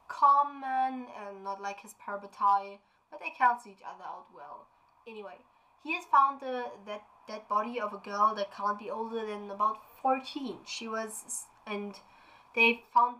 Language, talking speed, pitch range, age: English, 170 wpm, 200-245 Hz, 20-39